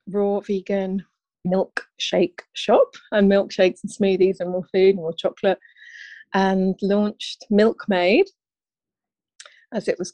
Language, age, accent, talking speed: English, 30-49, British, 120 wpm